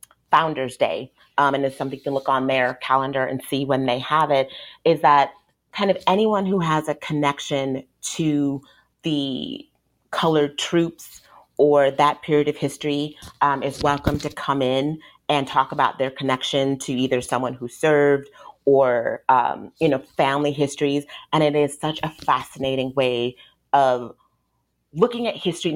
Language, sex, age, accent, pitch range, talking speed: English, female, 30-49, American, 130-150 Hz, 160 wpm